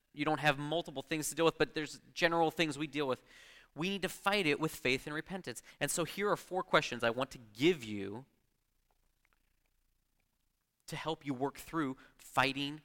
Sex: male